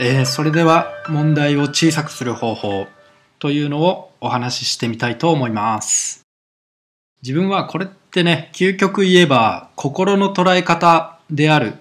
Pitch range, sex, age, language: 130-170 Hz, male, 20-39, Japanese